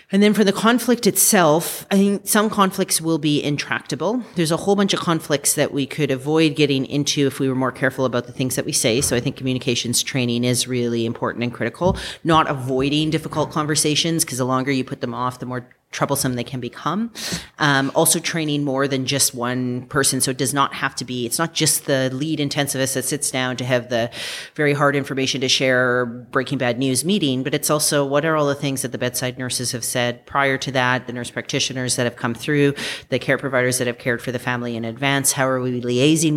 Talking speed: 230 wpm